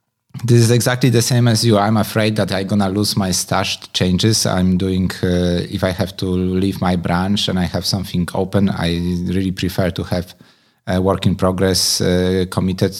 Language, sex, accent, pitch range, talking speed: English, male, Polish, 90-105 Hz, 200 wpm